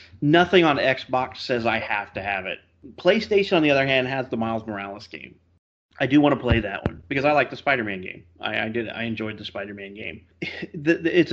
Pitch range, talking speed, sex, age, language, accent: 100-130 Hz, 230 wpm, male, 30-49, English, American